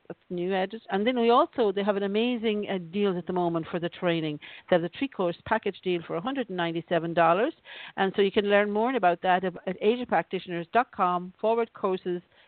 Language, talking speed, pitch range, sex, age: English, 195 wpm, 165-200 Hz, female, 50-69